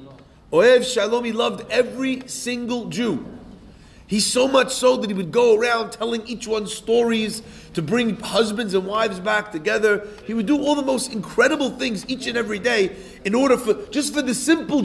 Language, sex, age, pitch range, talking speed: English, male, 40-59, 210-245 Hz, 180 wpm